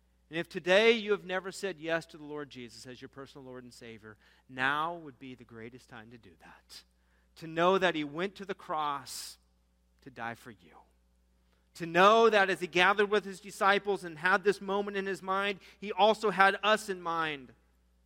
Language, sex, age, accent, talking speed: English, male, 40-59, American, 205 wpm